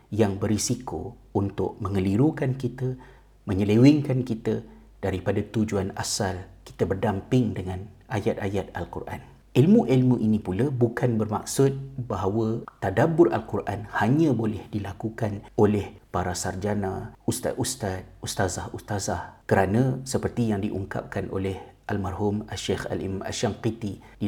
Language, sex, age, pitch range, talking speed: Malay, male, 50-69, 100-120 Hz, 100 wpm